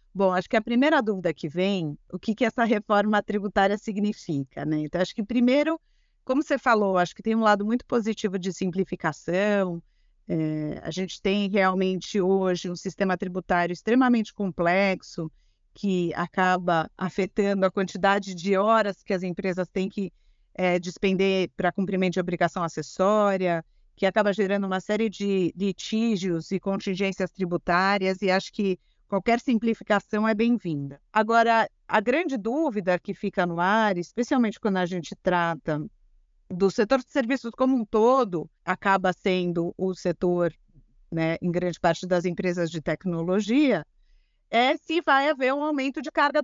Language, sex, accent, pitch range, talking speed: Portuguese, female, Brazilian, 180-220 Hz, 150 wpm